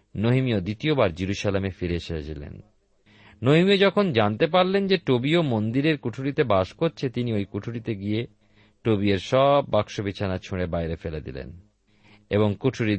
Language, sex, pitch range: Bengali, male, 100-135 Hz